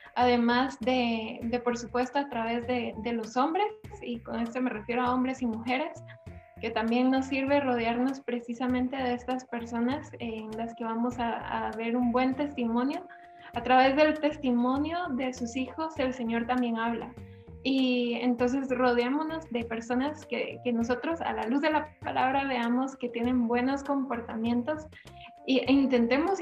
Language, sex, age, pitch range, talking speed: Spanish, female, 10-29, 235-270 Hz, 160 wpm